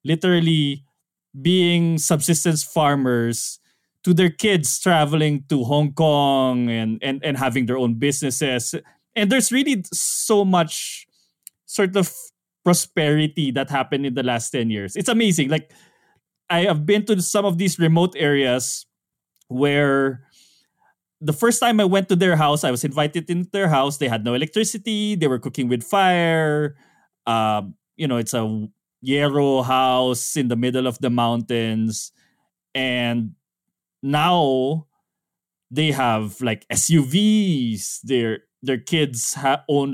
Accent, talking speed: Filipino, 140 wpm